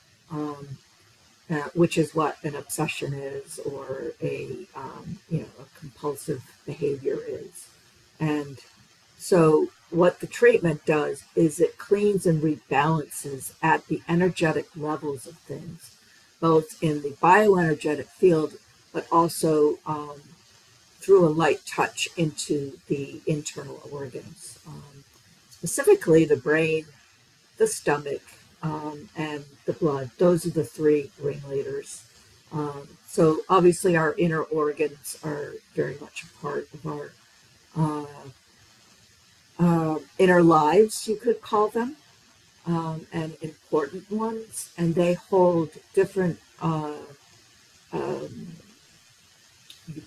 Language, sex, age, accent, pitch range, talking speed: English, female, 50-69, American, 145-175 Hz, 115 wpm